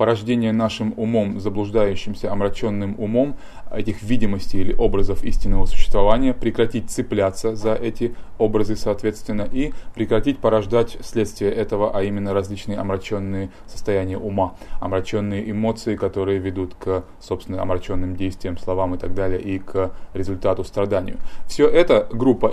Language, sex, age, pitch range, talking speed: English, male, 20-39, 95-110 Hz, 130 wpm